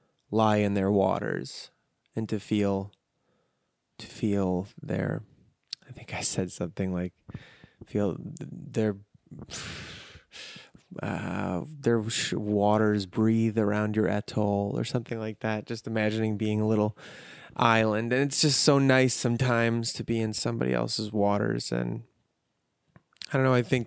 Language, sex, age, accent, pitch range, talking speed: English, male, 20-39, American, 105-120 Hz, 135 wpm